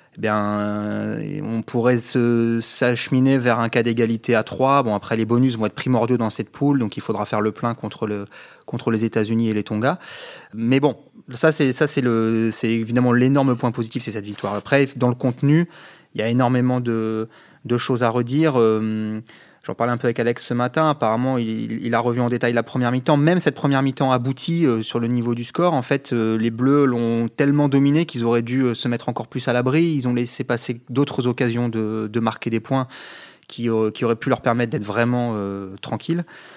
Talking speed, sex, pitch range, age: 210 wpm, male, 115-135 Hz, 20-39